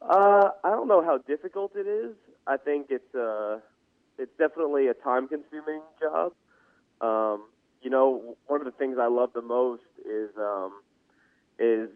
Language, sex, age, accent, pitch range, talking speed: English, male, 20-39, American, 110-135 Hz, 160 wpm